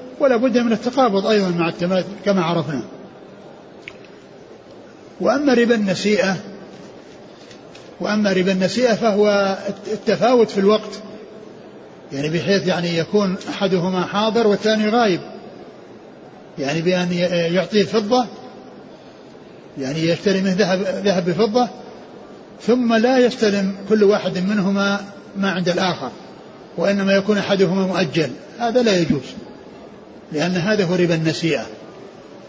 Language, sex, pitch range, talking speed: Arabic, male, 180-215 Hz, 105 wpm